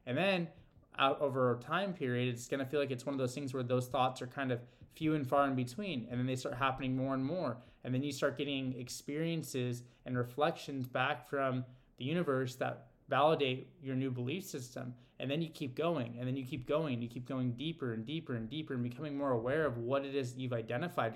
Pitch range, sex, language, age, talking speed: 125-140 Hz, male, English, 20-39, 230 wpm